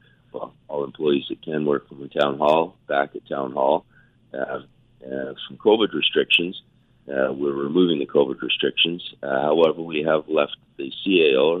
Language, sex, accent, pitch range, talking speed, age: English, male, American, 70-85 Hz, 160 wpm, 40-59